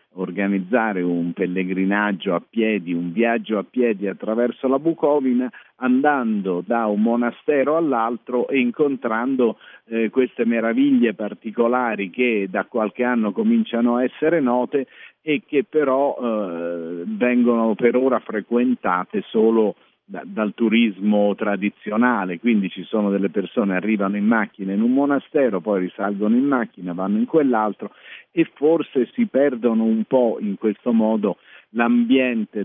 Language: Italian